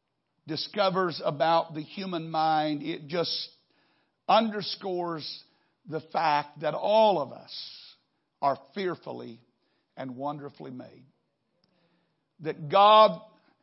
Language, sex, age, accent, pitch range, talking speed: English, male, 50-69, American, 170-245 Hz, 90 wpm